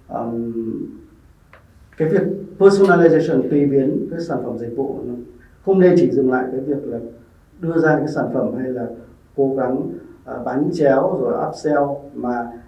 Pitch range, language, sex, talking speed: 120-160 Hz, Vietnamese, male, 165 wpm